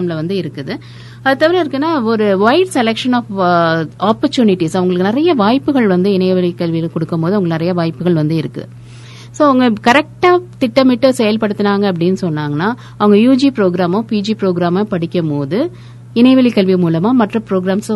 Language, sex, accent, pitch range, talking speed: Tamil, female, native, 175-245 Hz, 35 wpm